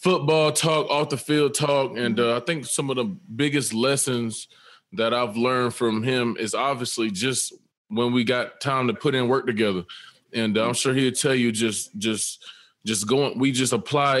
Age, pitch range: 20-39, 120-145 Hz